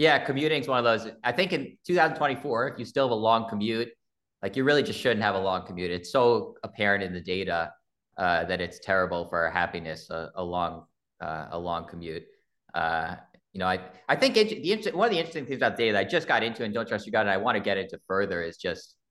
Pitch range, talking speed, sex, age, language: 90-115 Hz, 255 wpm, male, 30-49, English